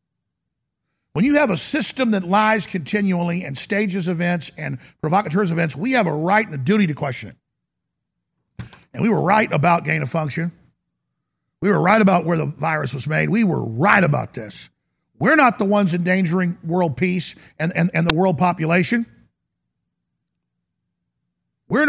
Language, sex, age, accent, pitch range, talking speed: English, male, 50-69, American, 150-205 Hz, 165 wpm